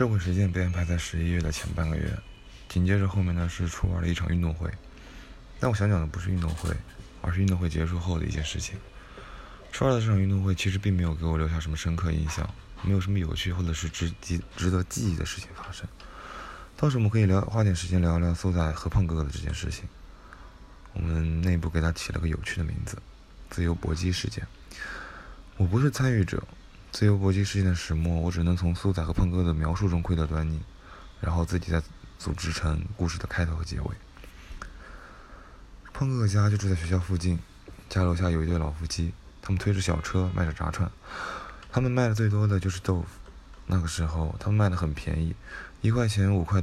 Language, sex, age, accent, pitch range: Chinese, male, 20-39, Polish, 80-95 Hz